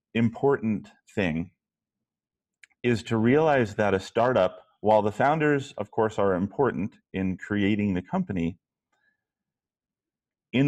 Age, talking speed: 30-49, 110 wpm